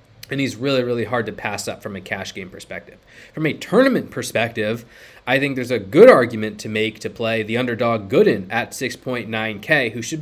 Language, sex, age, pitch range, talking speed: English, male, 20-39, 110-130 Hz, 200 wpm